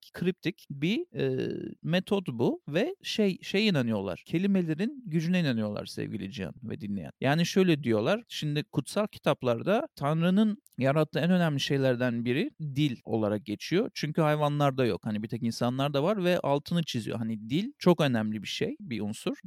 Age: 40-59